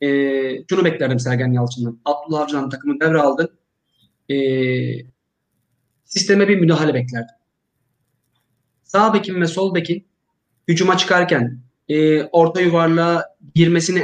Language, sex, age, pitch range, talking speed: Turkish, male, 30-49, 140-195 Hz, 110 wpm